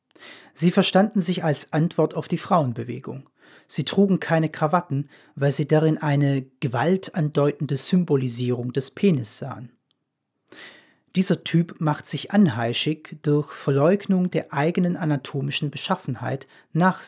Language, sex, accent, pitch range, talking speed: German, male, German, 135-175 Hz, 115 wpm